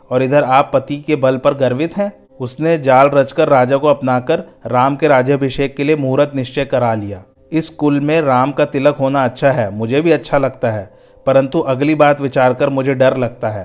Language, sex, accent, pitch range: Hindi, male, native, 120-145 Hz